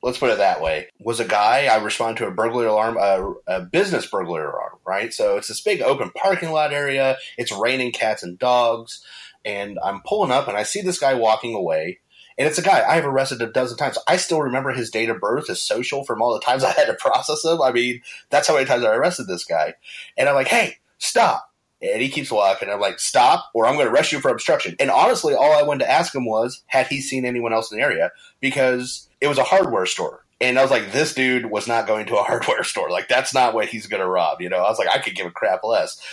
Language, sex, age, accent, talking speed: English, male, 30-49, American, 260 wpm